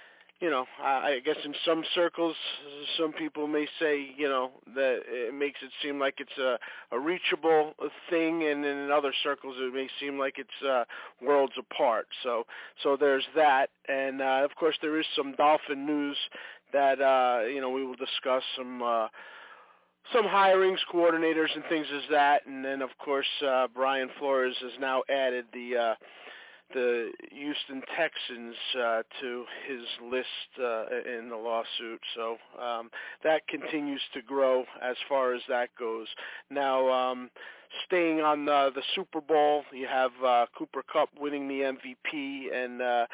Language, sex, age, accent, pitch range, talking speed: English, male, 40-59, American, 130-155 Hz, 160 wpm